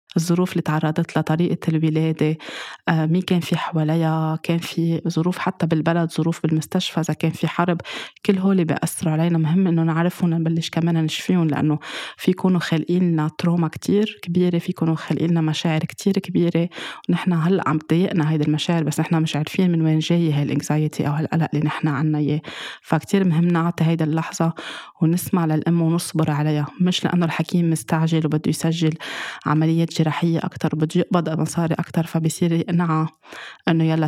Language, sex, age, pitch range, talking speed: Arabic, female, 20-39, 155-170 Hz, 155 wpm